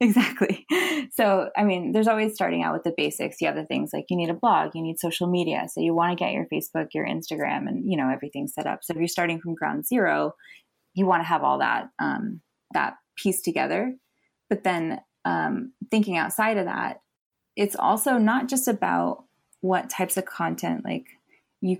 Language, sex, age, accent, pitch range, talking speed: English, female, 20-39, American, 165-215 Hz, 205 wpm